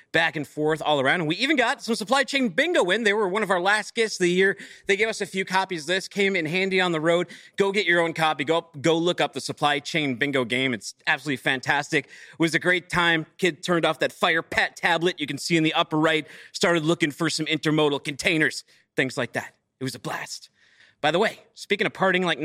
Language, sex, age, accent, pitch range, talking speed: English, male, 30-49, American, 155-230 Hz, 250 wpm